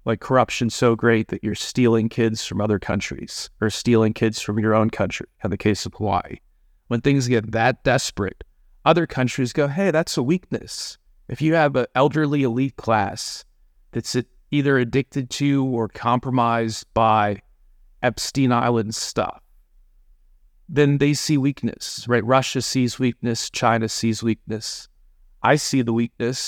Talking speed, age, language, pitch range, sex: 150 wpm, 30-49, English, 110-130 Hz, male